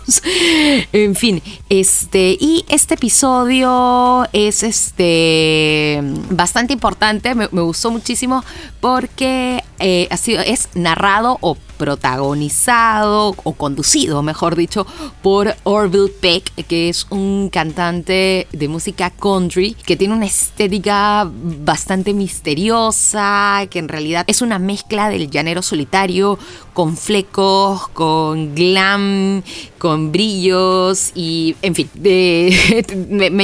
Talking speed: 115 wpm